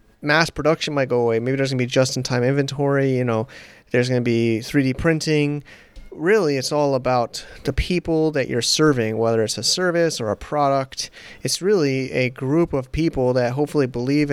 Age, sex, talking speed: 30-49, male, 190 wpm